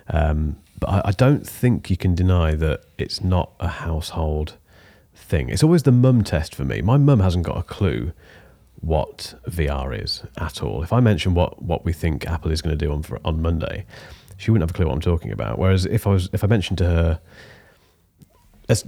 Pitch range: 85-105 Hz